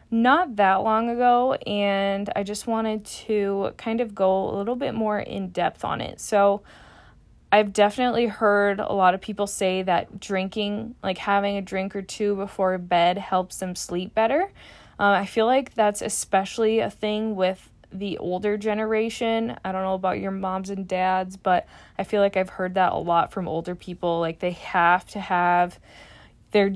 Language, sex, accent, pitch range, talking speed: English, female, American, 190-220 Hz, 180 wpm